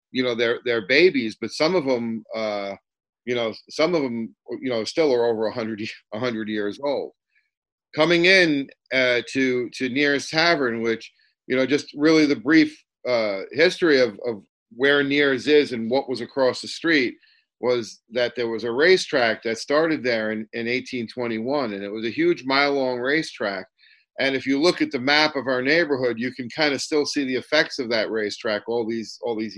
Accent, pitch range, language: American, 115-145 Hz, English